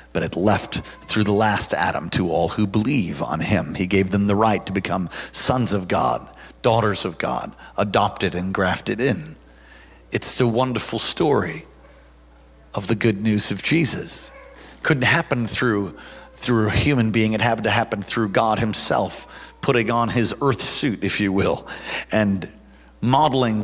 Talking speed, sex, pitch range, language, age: 160 wpm, male, 95-125 Hz, English, 50-69